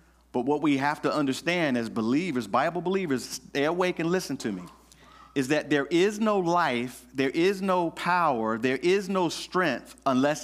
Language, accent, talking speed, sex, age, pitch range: English, American, 180 wpm, male, 40-59, 135-205 Hz